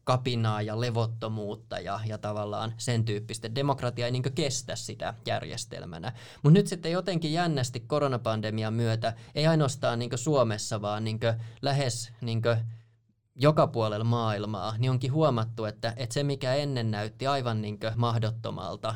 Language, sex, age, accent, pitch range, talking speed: Finnish, male, 20-39, native, 110-125 Hz, 140 wpm